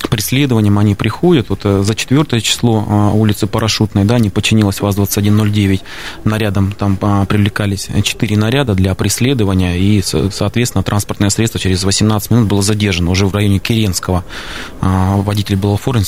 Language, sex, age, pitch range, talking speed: Russian, male, 20-39, 100-110 Hz, 140 wpm